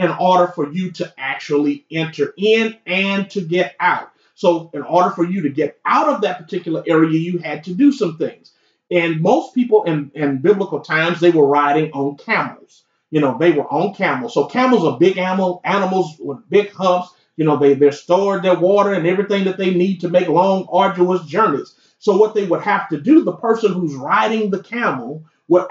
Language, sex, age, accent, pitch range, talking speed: English, male, 30-49, American, 170-220 Hz, 205 wpm